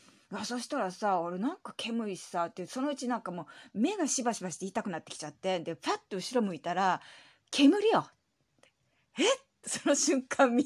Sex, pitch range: female, 185-285 Hz